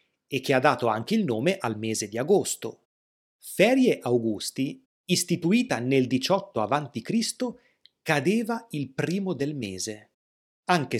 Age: 30-49